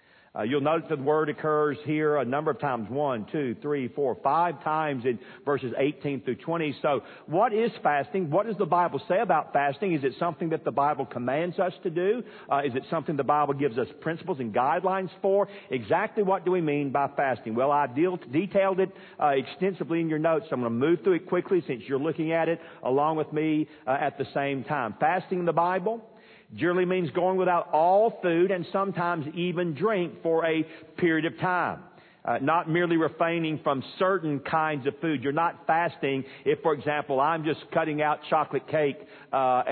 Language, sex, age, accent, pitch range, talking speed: English, male, 50-69, American, 140-175 Hz, 200 wpm